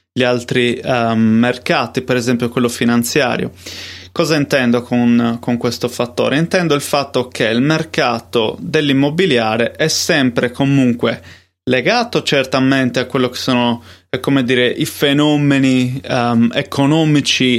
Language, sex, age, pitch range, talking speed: Italian, male, 20-39, 120-140 Hz, 115 wpm